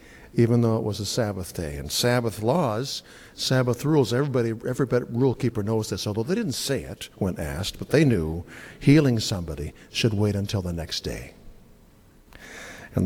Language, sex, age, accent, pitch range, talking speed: English, male, 60-79, American, 105-135 Hz, 170 wpm